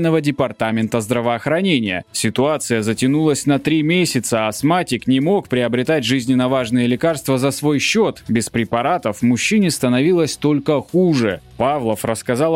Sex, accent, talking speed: male, native, 120 wpm